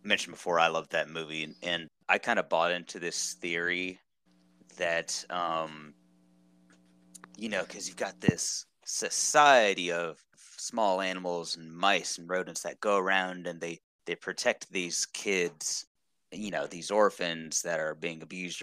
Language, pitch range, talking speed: English, 80-90 Hz, 155 wpm